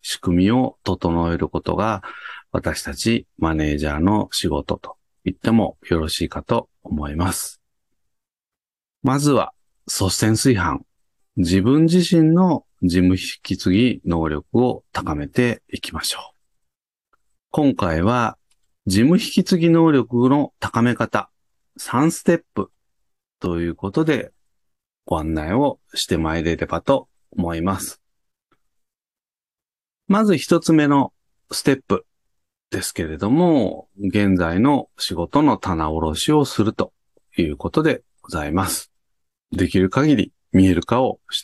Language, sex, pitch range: Japanese, male, 85-140 Hz